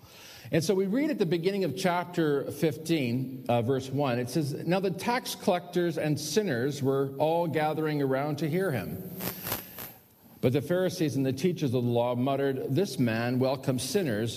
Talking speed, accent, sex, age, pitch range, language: 175 wpm, American, male, 50-69, 115-165 Hz, English